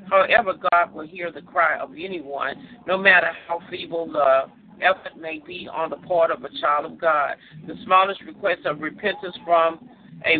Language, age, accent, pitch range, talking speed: English, 50-69, American, 160-190 Hz, 180 wpm